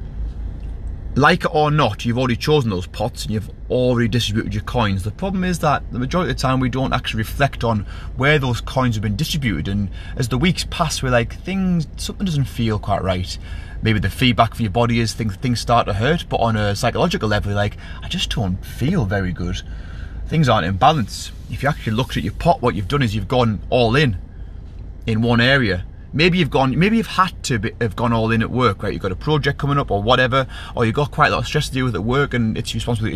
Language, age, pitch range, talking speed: English, 30-49, 100-135 Hz, 245 wpm